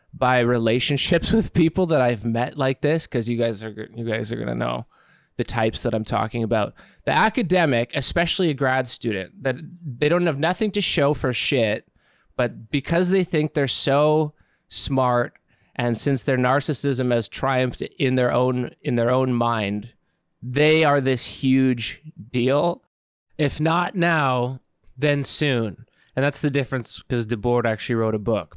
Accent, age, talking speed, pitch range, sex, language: American, 20-39, 165 wpm, 120-160 Hz, male, English